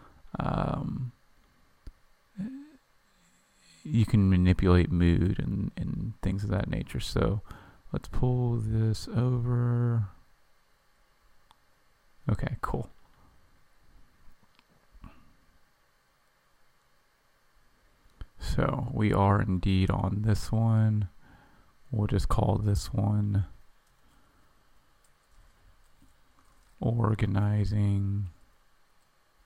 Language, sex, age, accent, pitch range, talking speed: English, male, 30-49, American, 90-110 Hz, 65 wpm